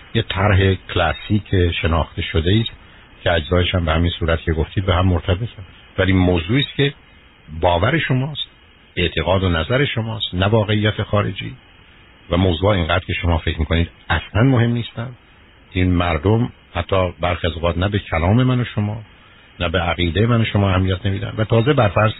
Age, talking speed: 60-79, 160 wpm